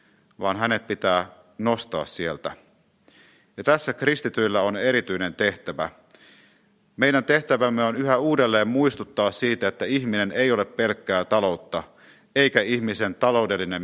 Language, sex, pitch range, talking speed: Finnish, male, 90-130 Hz, 115 wpm